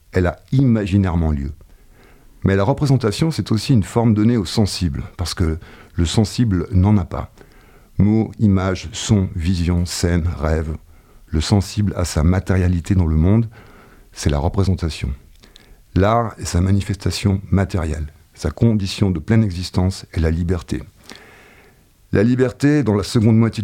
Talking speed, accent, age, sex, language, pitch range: 145 wpm, French, 50-69, male, French, 90-110 Hz